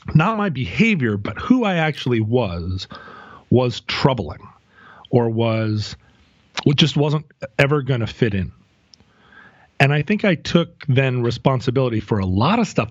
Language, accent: English, American